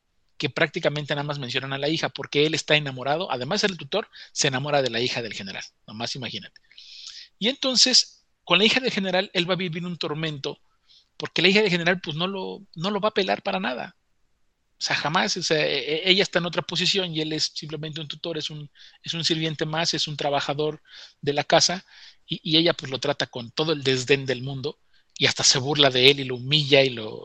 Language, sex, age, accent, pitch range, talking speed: Spanish, male, 40-59, Mexican, 135-175 Hz, 230 wpm